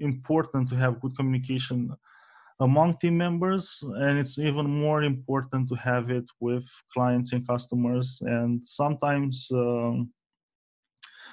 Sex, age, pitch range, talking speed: male, 20-39, 125-150 Hz, 120 wpm